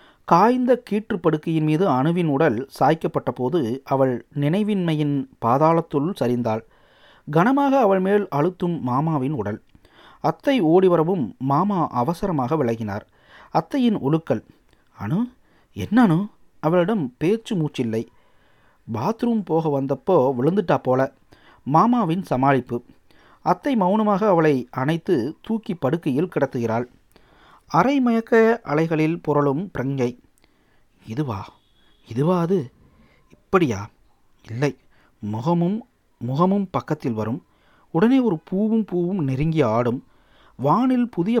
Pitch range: 135-205 Hz